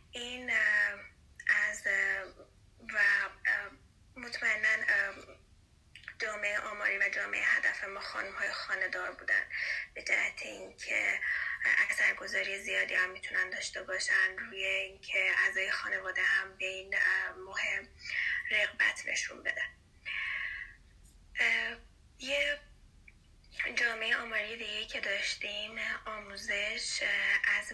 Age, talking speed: 20-39, 95 wpm